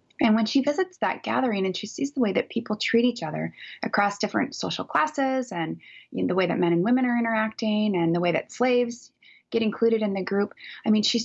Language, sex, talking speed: English, female, 225 wpm